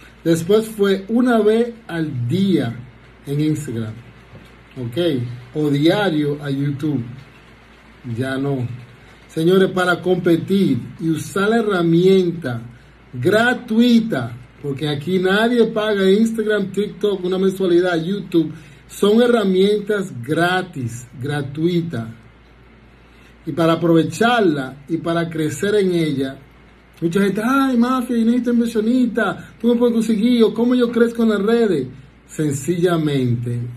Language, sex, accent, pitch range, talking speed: Spanish, male, American, 130-190 Hz, 110 wpm